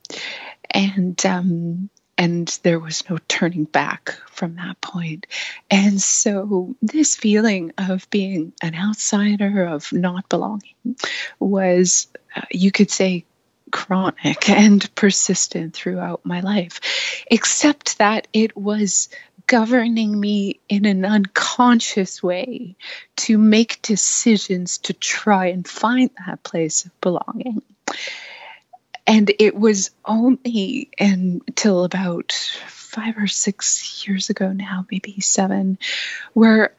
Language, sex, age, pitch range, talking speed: English, female, 20-39, 180-220 Hz, 115 wpm